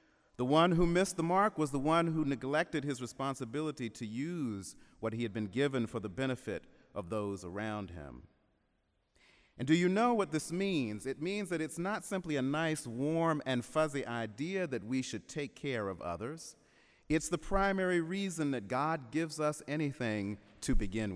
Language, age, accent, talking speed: English, 40-59, American, 180 wpm